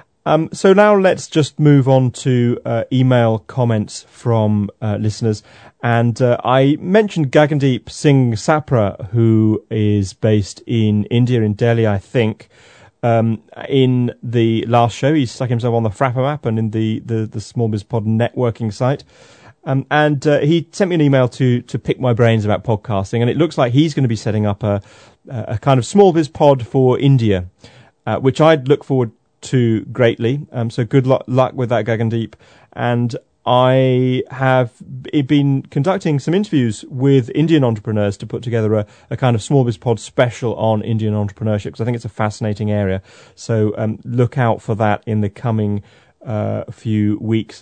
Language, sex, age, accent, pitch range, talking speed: English, male, 30-49, British, 110-130 Hz, 180 wpm